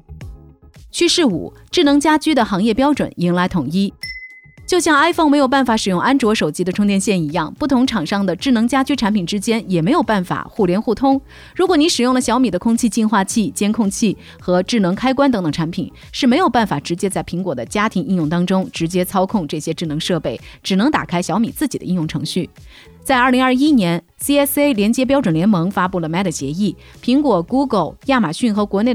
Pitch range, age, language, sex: 180-260 Hz, 30-49, Chinese, female